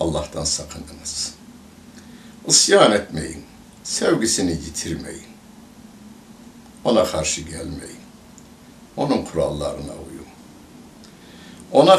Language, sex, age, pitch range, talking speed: Turkish, male, 60-79, 80-135 Hz, 65 wpm